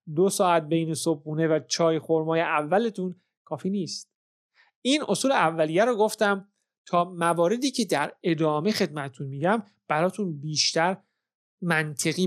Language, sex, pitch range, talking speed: Persian, male, 160-205 Hz, 120 wpm